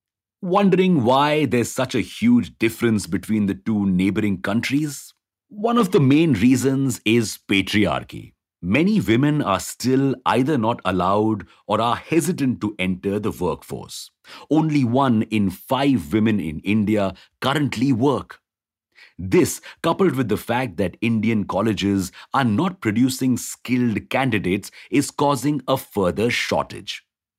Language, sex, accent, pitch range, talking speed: English, male, Indian, 100-135 Hz, 130 wpm